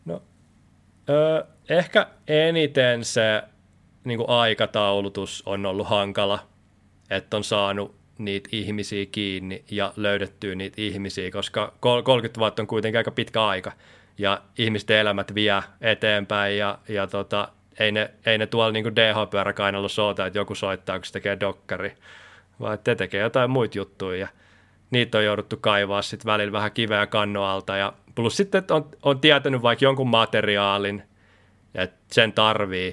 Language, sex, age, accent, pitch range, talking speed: Finnish, male, 30-49, native, 100-115 Hz, 140 wpm